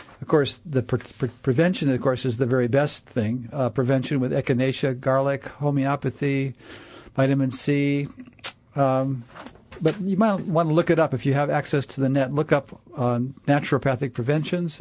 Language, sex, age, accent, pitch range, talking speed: English, male, 50-69, American, 125-150 Hz, 170 wpm